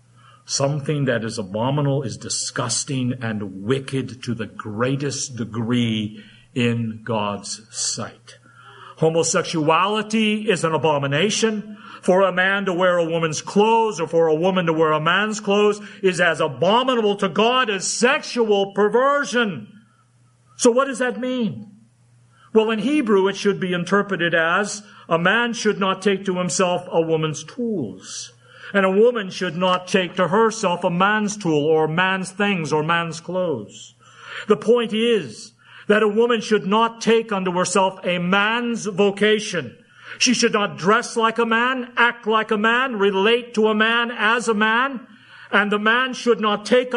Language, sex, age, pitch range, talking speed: English, male, 50-69, 160-225 Hz, 155 wpm